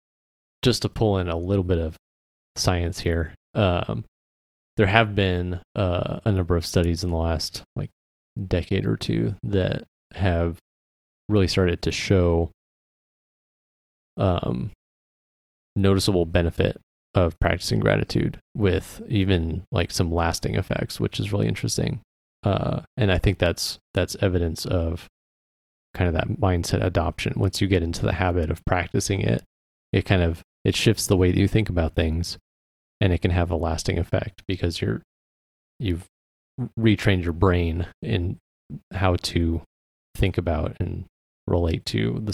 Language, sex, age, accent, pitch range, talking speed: English, male, 30-49, American, 80-100 Hz, 145 wpm